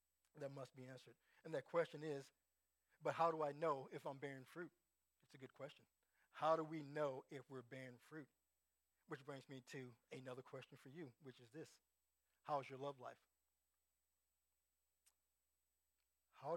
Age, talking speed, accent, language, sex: 50-69, 165 wpm, American, English, male